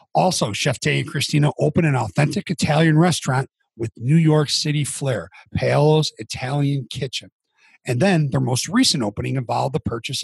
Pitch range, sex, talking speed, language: 125-165 Hz, male, 160 wpm, English